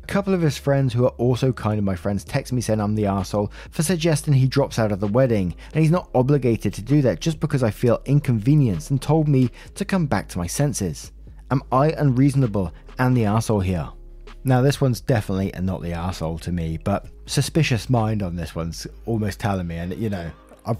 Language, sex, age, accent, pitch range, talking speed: English, male, 20-39, British, 95-135 Hz, 220 wpm